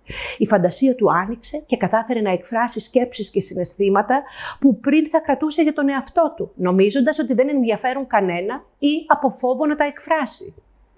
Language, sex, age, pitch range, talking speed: Greek, female, 50-69, 210-290 Hz, 165 wpm